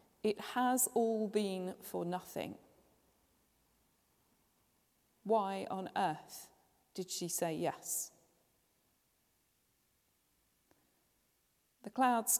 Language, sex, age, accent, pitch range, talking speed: English, female, 40-59, British, 185-220 Hz, 75 wpm